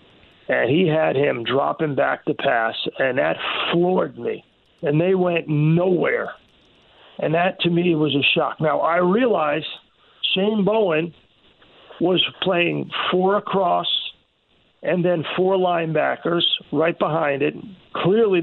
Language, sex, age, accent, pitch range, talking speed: English, male, 50-69, American, 160-195 Hz, 130 wpm